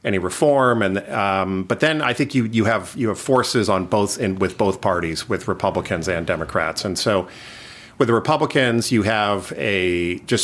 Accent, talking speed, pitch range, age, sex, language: American, 190 wpm, 90-110 Hz, 50-69, male, English